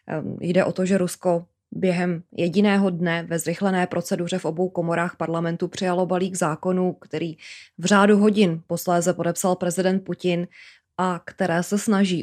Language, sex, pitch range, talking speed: Czech, female, 170-185 Hz, 145 wpm